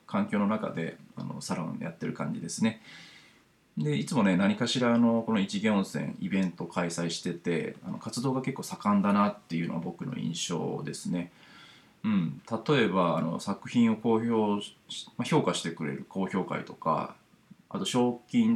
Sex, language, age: male, Japanese, 20-39